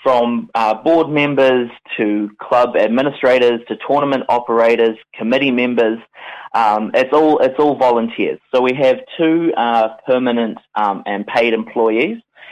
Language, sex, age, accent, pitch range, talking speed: English, male, 20-39, Australian, 105-130 Hz, 135 wpm